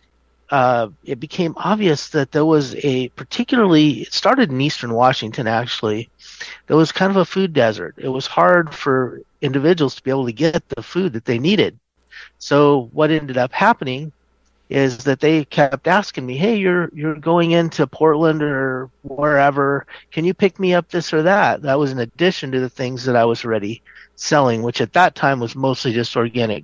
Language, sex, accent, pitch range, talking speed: English, male, American, 120-155 Hz, 190 wpm